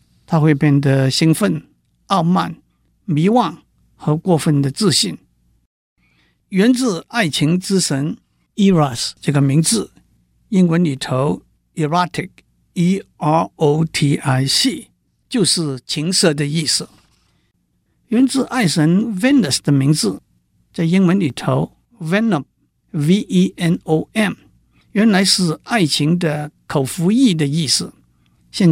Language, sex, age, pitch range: Chinese, male, 60-79, 135-180 Hz